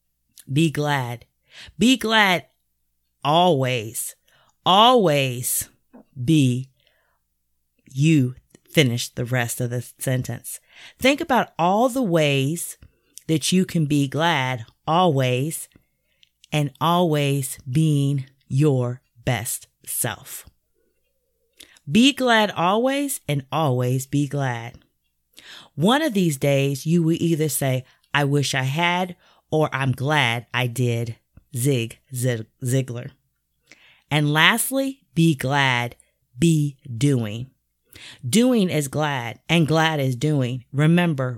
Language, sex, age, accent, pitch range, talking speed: English, female, 30-49, American, 125-160 Hz, 105 wpm